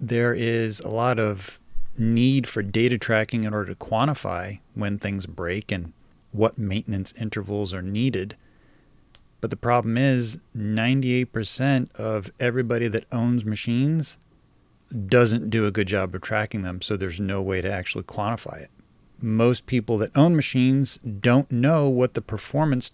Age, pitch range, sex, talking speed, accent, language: 40-59, 105-125 Hz, male, 150 wpm, American, English